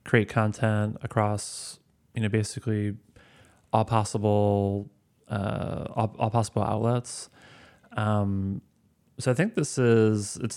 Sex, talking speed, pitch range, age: male, 115 wpm, 100-110 Hz, 20-39